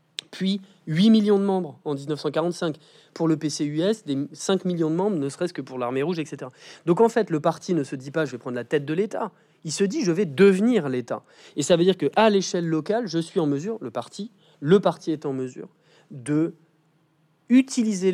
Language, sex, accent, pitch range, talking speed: French, male, French, 145-190 Hz, 220 wpm